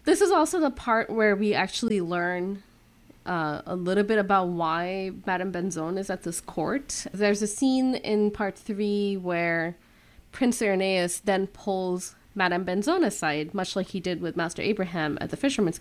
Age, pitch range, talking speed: 20-39, 170-205 Hz, 170 wpm